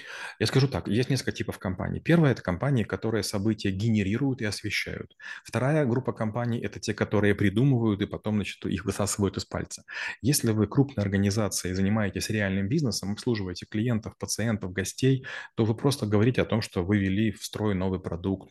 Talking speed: 180 wpm